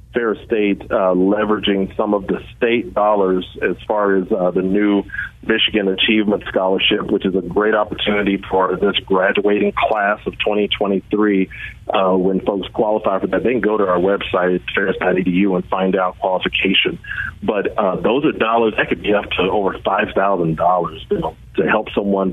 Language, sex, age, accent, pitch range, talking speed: English, male, 40-59, American, 95-110 Hz, 165 wpm